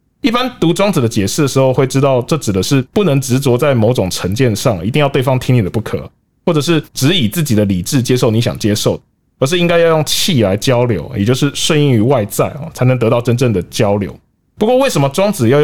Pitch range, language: 115-160 Hz, Chinese